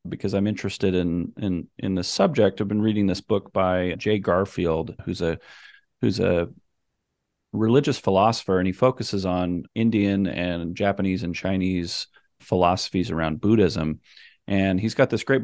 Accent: American